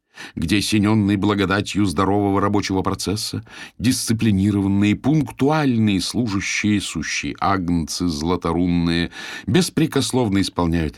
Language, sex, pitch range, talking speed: Russian, male, 90-115 Hz, 75 wpm